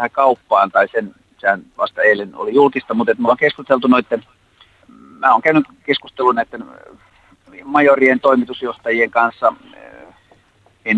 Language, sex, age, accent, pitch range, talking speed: Finnish, male, 30-49, native, 120-160 Hz, 120 wpm